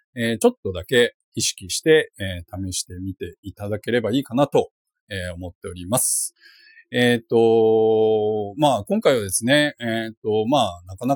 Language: Japanese